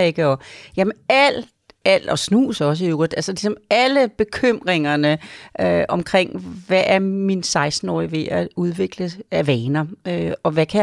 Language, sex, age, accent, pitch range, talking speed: Danish, female, 40-59, native, 155-190 Hz, 150 wpm